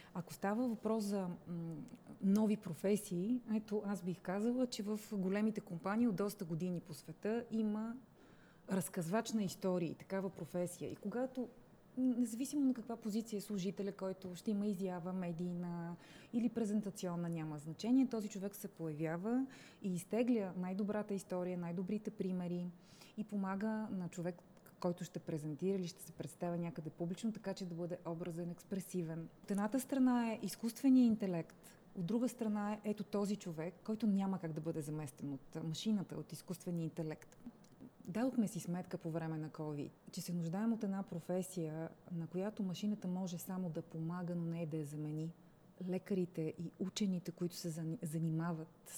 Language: Bulgarian